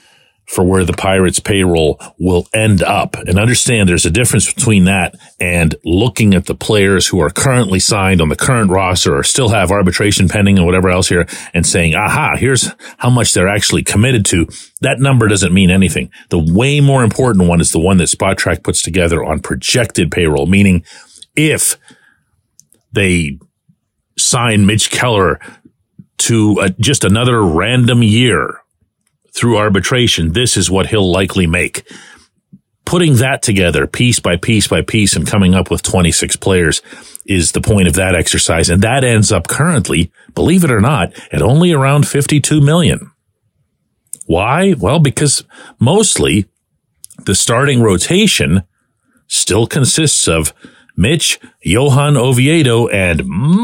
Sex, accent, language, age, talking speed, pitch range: male, American, English, 40-59, 150 wpm, 90-130 Hz